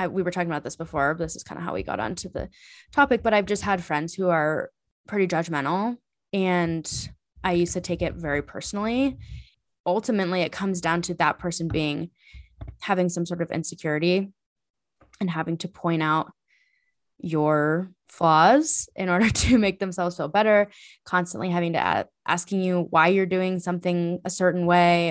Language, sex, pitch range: English, female, 160-195 Hz